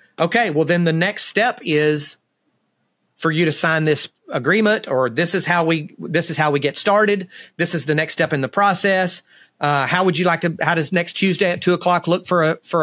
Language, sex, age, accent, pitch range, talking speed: English, male, 30-49, American, 145-175 Hz, 230 wpm